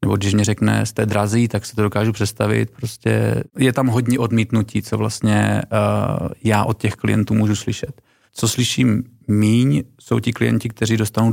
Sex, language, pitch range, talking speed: male, Czech, 105-115 Hz, 175 wpm